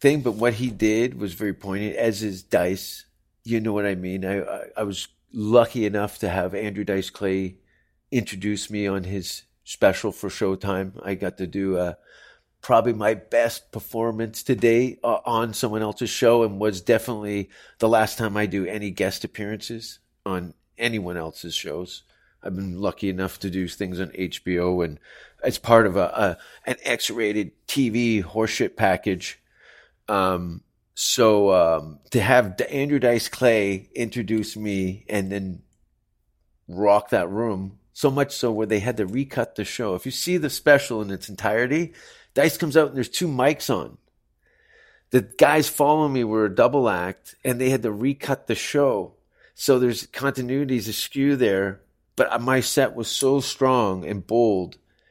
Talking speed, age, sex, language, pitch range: 170 wpm, 40-59, male, English, 95-125 Hz